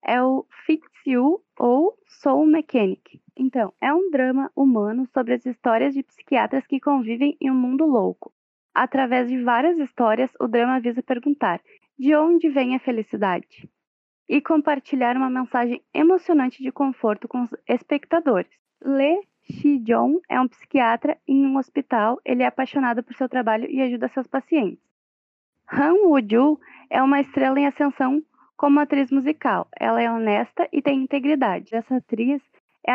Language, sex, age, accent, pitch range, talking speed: Portuguese, female, 20-39, Brazilian, 245-295 Hz, 155 wpm